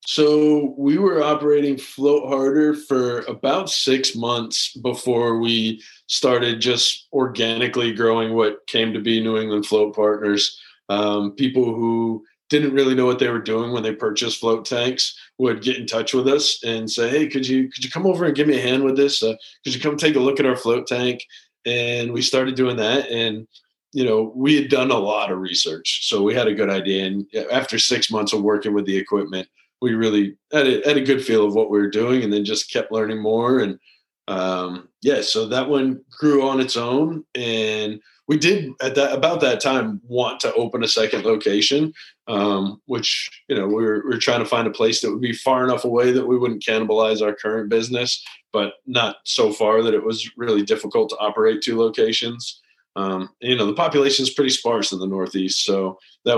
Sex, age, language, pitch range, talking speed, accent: male, 20-39, English, 110-135 Hz, 210 wpm, American